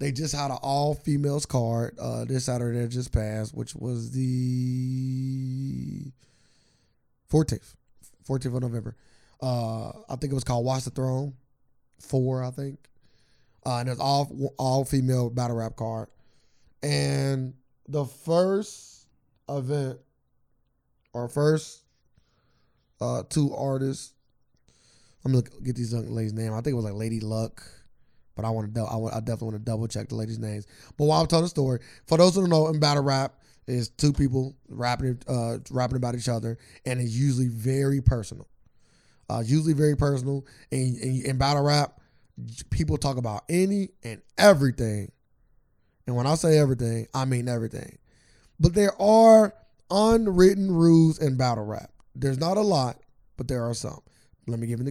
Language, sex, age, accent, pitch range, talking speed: English, male, 20-39, American, 115-140 Hz, 165 wpm